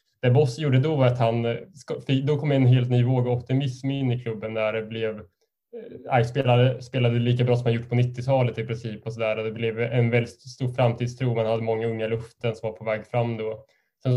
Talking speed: 220 wpm